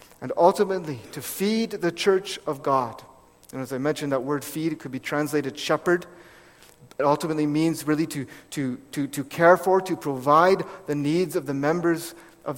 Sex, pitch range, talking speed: male, 125-190 Hz, 180 wpm